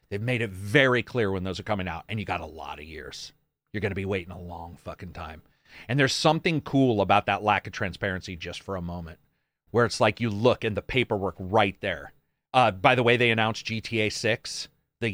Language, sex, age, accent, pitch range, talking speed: English, male, 40-59, American, 95-120 Hz, 230 wpm